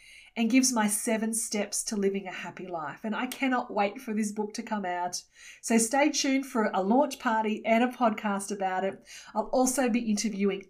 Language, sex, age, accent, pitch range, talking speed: English, female, 40-59, Australian, 185-240 Hz, 200 wpm